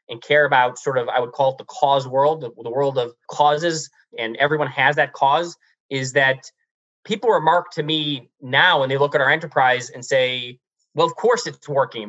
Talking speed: 205 wpm